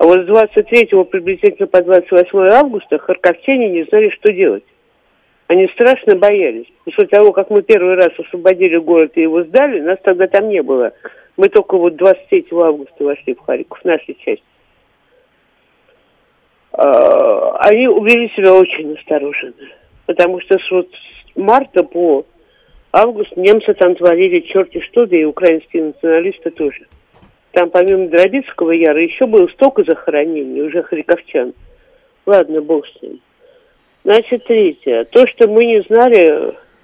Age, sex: 50-69, male